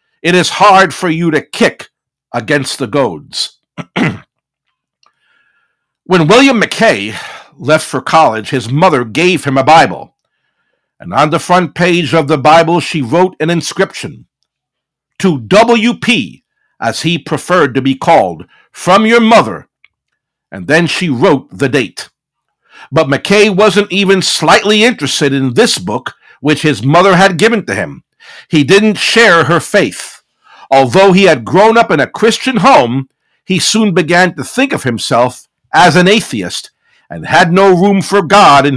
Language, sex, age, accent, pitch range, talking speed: English, male, 60-79, American, 150-210 Hz, 150 wpm